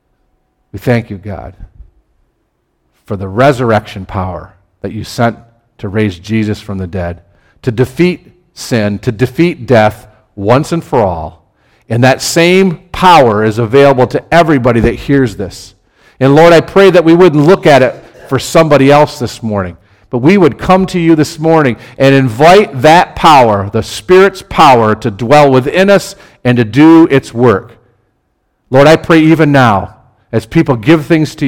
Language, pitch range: English, 105-145 Hz